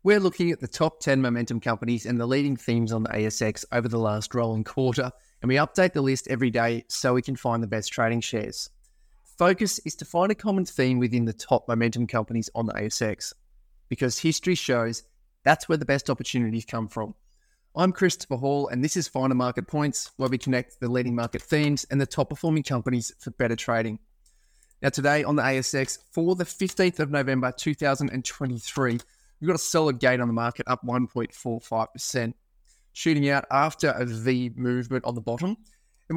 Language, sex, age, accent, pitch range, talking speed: English, male, 20-39, Australian, 120-145 Hz, 190 wpm